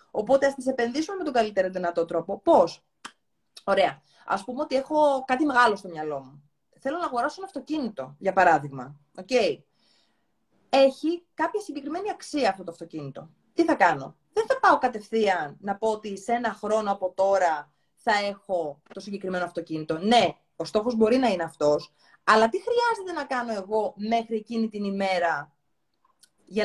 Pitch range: 190-290 Hz